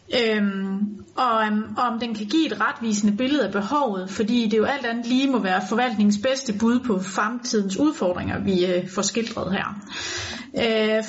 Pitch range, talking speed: 210-260 Hz, 180 wpm